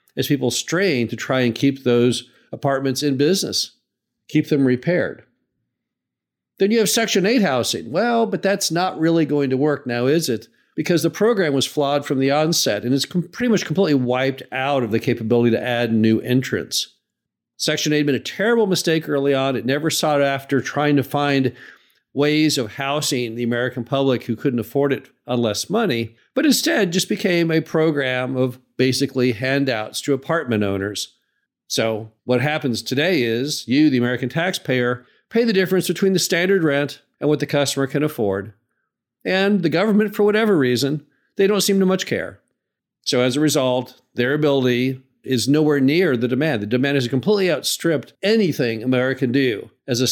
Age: 50-69